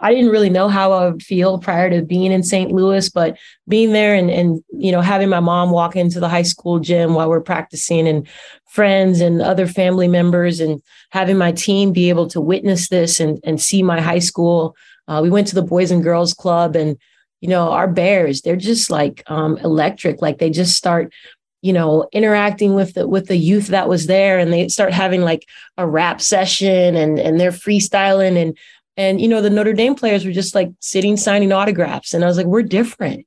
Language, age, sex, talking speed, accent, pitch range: English, 30-49, female, 215 wpm, American, 165-195 Hz